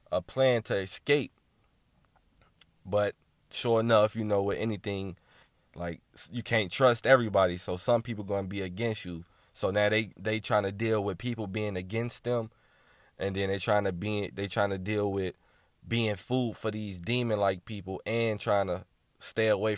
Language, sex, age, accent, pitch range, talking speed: English, male, 20-39, American, 95-115 Hz, 175 wpm